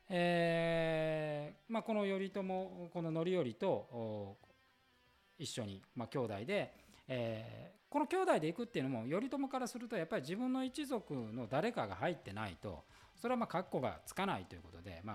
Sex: male